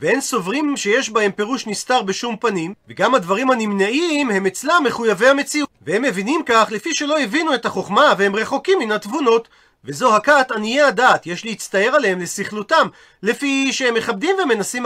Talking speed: 160 wpm